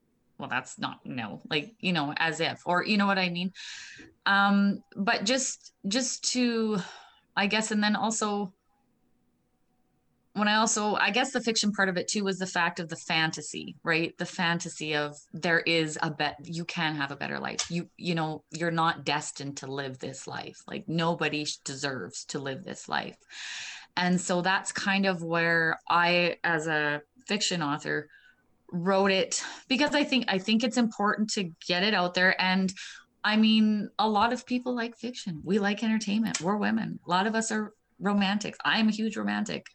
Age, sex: 20-39, female